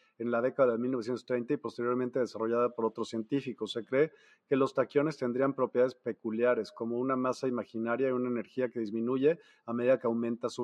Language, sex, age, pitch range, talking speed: Spanish, male, 40-59, 115-130 Hz, 185 wpm